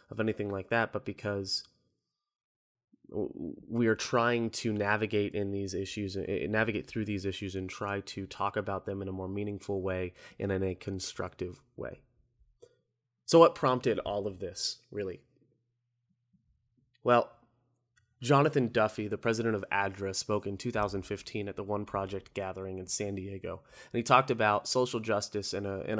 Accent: American